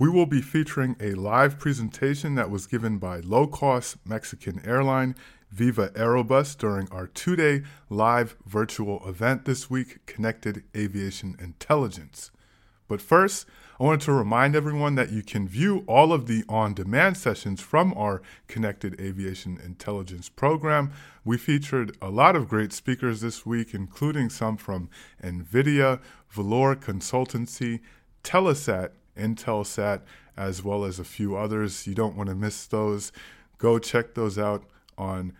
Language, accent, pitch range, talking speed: English, American, 100-135 Hz, 140 wpm